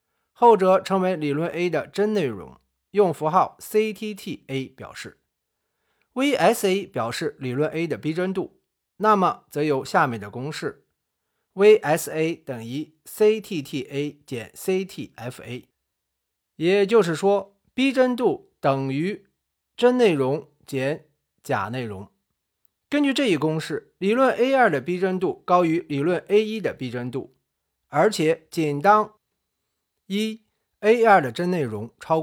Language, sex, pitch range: Chinese, male, 135-200 Hz